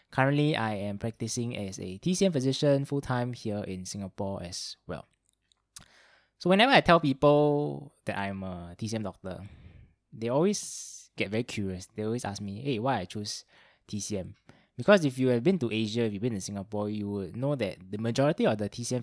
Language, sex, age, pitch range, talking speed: English, male, 20-39, 100-130 Hz, 185 wpm